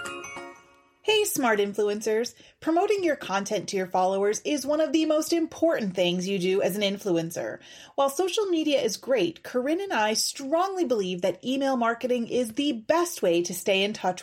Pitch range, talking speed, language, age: 195-300 Hz, 175 wpm, English, 30-49